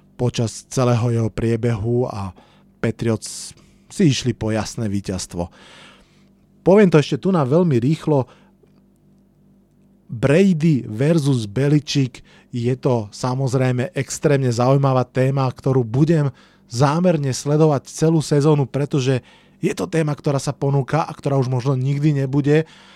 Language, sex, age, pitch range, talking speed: Slovak, male, 30-49, 120-170 Hz, 120 wpm